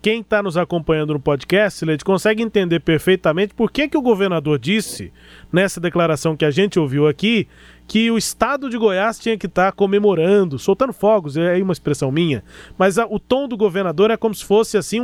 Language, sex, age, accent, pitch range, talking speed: Portuguese, male, 20-39, Brazilian, 165-210 Hz, 205 wpm